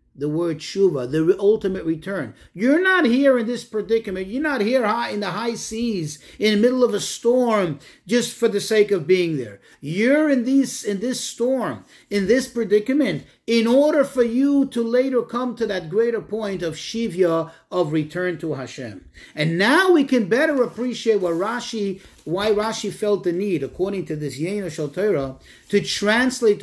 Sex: male